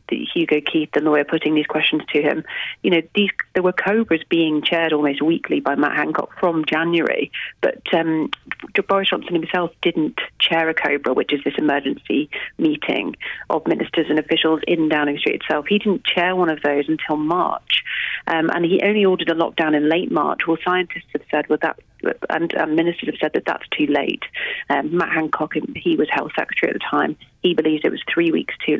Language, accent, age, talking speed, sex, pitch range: English, British, 30-49, 205 wpm, female, 155-180 Hz